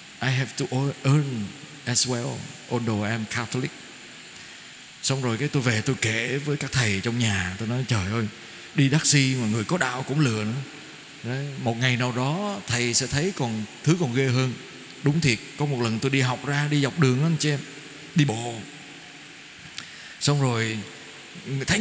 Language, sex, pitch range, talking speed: Vietnamese, male, 125-170 Hz, 190 wpm